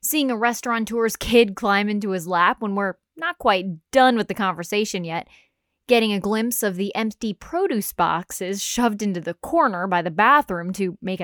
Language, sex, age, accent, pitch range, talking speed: English, female, 10-29, American, 190-240 Hz, 180 wpm